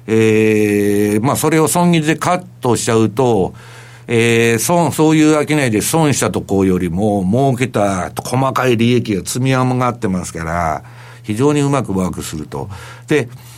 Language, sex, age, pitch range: Japanese, male, 60-79, 110-150 Hz